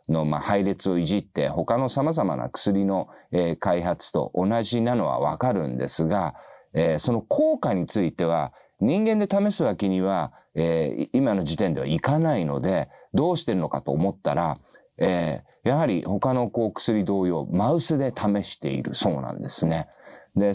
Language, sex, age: Japanese, male, 40-59